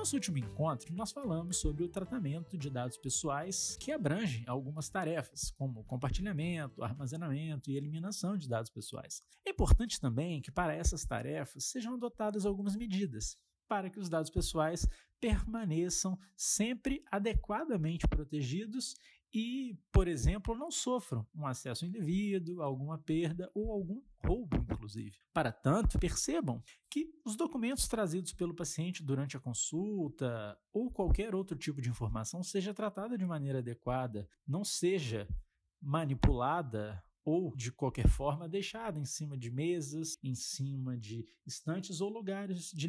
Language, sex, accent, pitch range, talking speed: Portuguese, male, Brazilian, 135-200 Hz, 140 wpm